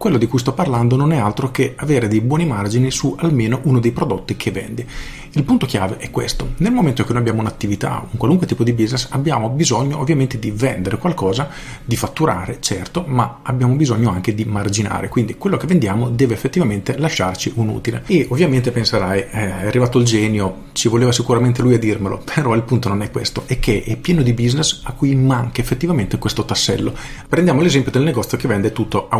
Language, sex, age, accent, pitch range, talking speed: Italian, male, 40-59, native, 110-145 Hz, 205 wpm